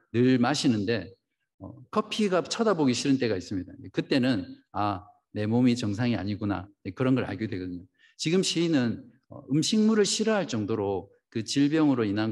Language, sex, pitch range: Korean, male, 115-150 Hz